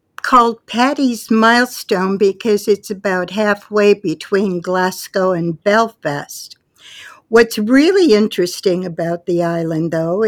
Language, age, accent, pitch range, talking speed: English, 60-79, American, 190-235 Hz, 105 wpm